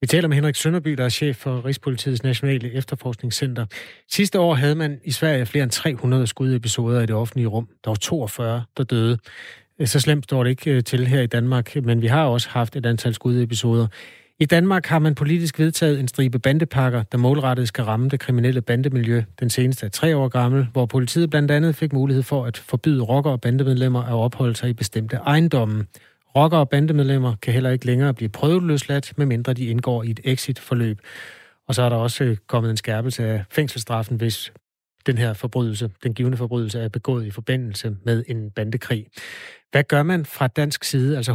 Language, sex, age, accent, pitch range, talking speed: Danish, male, 30-49, native, 120-140 Hz, 195 wpm